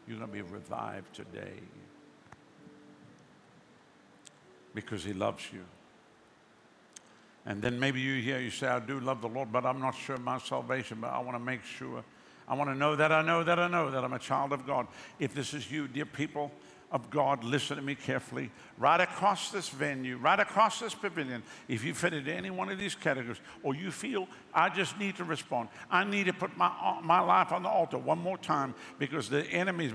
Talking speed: 200 wpm